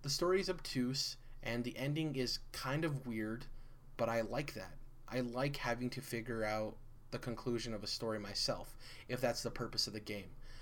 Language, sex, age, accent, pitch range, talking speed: English, male, 20-39, American, 110-125 Hz, 190 wpm